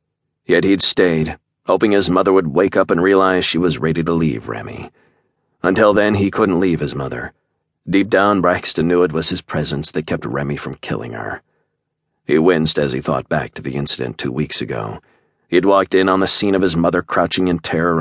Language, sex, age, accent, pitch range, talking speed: English, male, 40-59, American, 80-95 Hz, 205 wpm